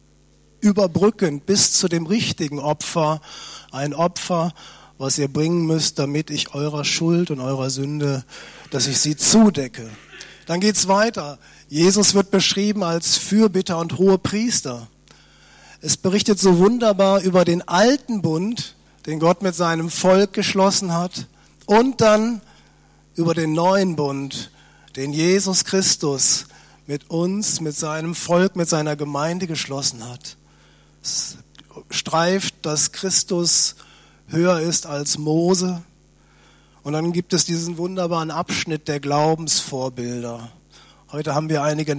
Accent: German